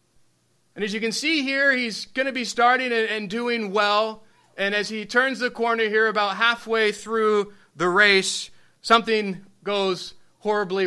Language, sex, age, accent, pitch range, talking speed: English, male, 30-49, American, 170-210 Hz, 160 wpm